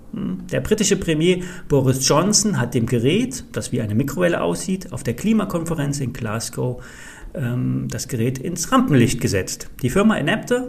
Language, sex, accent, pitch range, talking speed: German, male, German, 125-185 Hz, 150 wpm